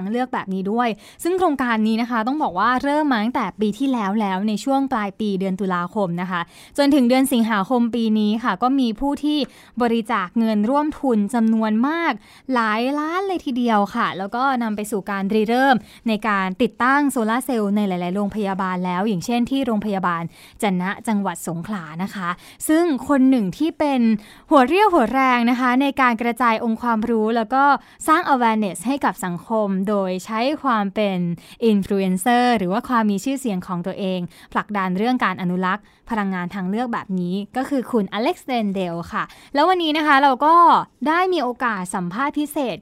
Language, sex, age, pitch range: Thai, female, 20-39, 200-270 Hz